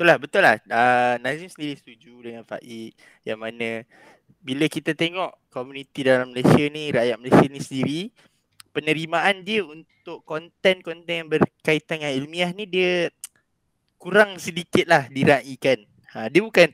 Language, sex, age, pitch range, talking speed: Malay, male, 20-39, 125-165 Hz, 150 wpm